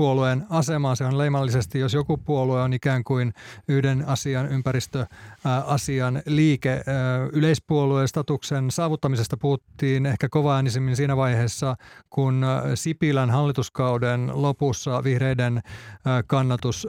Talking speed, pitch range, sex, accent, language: 105 wpm, 125-145 Hz, male, native, Finnish